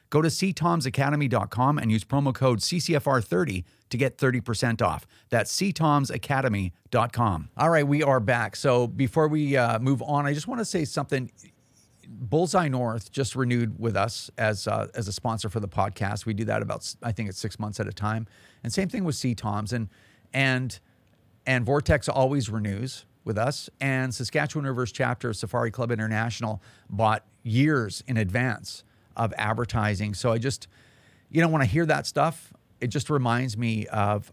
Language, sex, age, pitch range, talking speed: English, male, 40-59, 110-130 Hz, 175 wpm